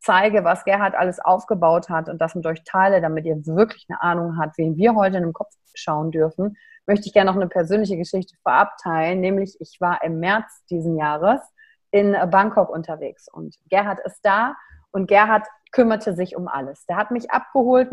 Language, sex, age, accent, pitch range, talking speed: German, female, 30-49, German, 180-225 Hz, 190 wpm